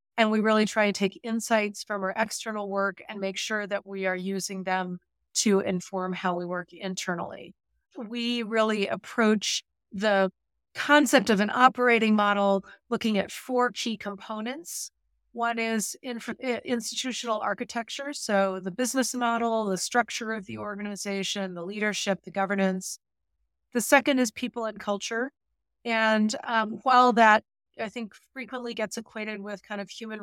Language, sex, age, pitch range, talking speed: English, female, 30-49, 195-230 Hz, 150 wpm